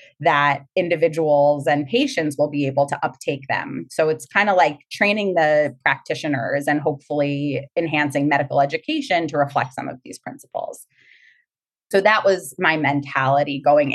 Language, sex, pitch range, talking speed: English, female, 145-195 Hz, 150 wpm